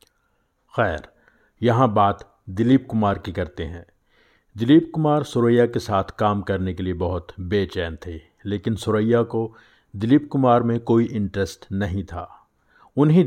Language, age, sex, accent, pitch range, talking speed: Hindi, 50-69, male, native, 95-125 Hz, 140 wpm